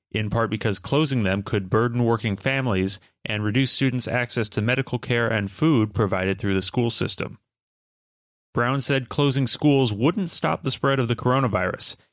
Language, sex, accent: English, male, American